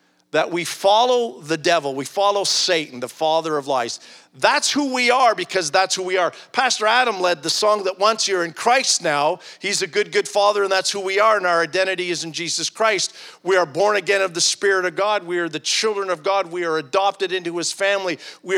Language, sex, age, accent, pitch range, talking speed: English, male, 50-69, American, 170-225 Hz, 230 wpm